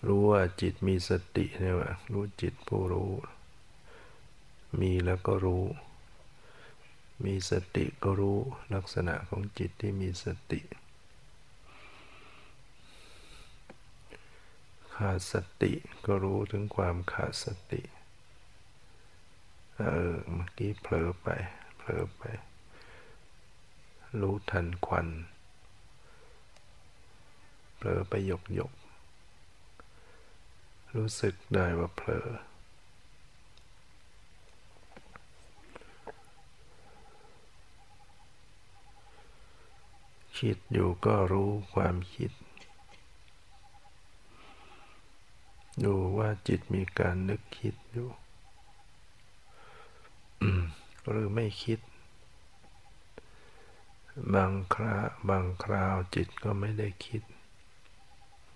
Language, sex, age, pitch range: English, male, 60-79, 90-105 Hz